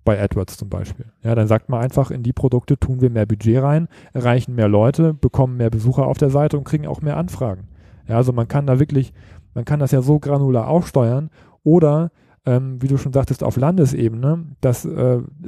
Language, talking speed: German, 210 wpm